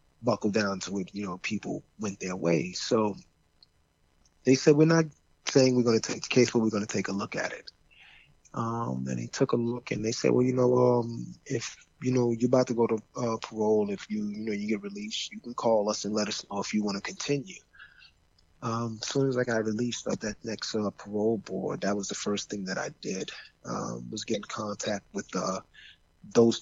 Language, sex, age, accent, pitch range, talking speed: English, male, 30-49, American, 100-120 Hz, 230 wpm